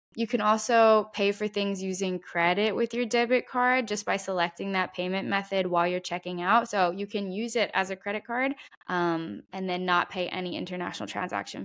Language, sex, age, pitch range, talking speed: English, female, 10-29, 185-230 Hz, 200 wpm